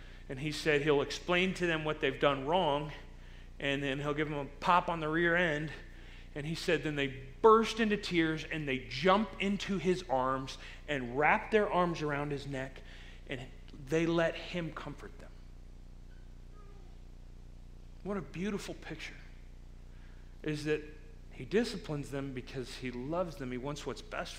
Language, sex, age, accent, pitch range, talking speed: English, male, 40-59, American, 130-180 Hz, 160 wpm